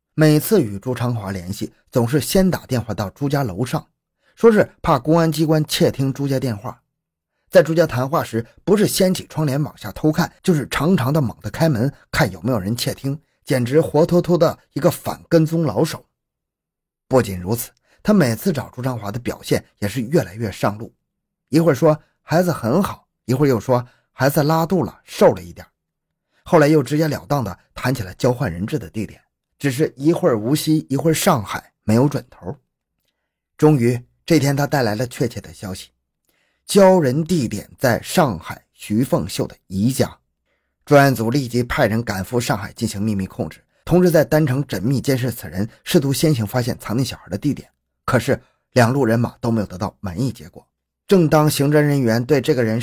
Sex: male